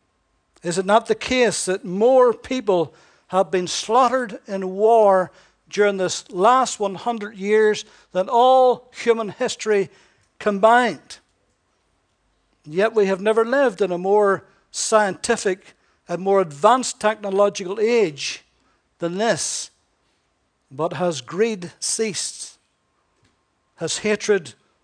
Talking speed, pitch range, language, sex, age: 110 wpm, 175-220 Hz, English, male, 60-79